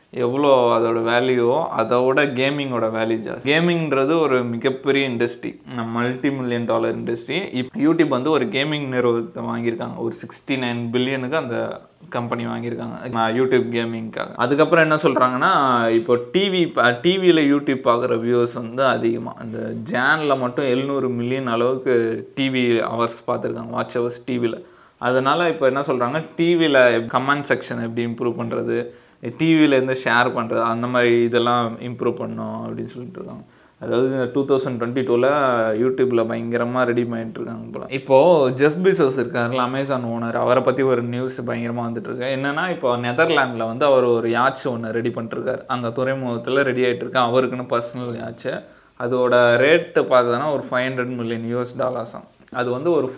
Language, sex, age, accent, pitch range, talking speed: Tamil, male, 20-39, native, 115-135 Hz, 145 wpm